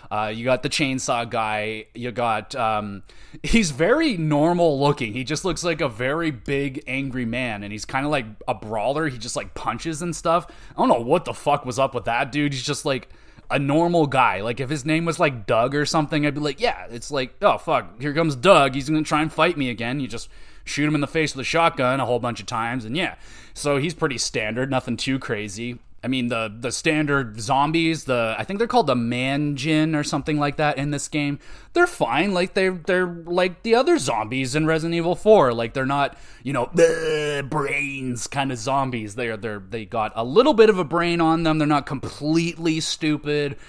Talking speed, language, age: 225 wpm, English, 20-39